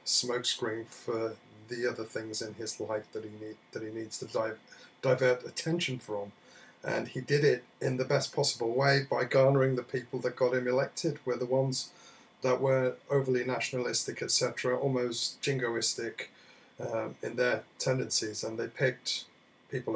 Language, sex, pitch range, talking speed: English, male, 115-135 Hz, 160 wpm